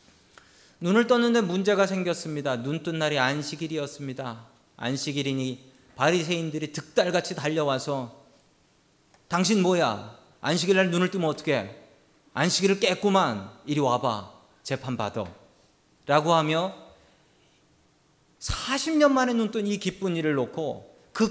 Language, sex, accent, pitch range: Korean, male, native, 140-205 Hz